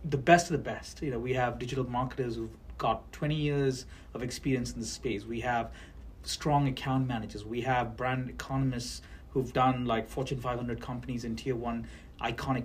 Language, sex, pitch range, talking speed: English, male, 115-140 Hz, 185 wpm